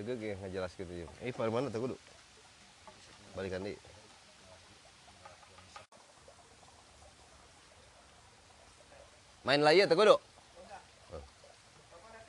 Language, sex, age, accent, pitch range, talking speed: Indonesian, male, 30-49, native, 100-125 Hz, 80 wpm